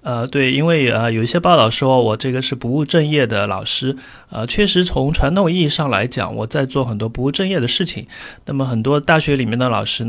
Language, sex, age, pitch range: Chinese, male, 30-49, 110-135 Hz